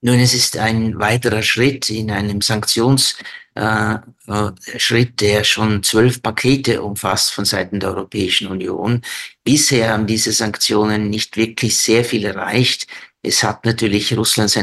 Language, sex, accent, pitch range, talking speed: German, male, Austrian, 100-115 Hz, 135 wpm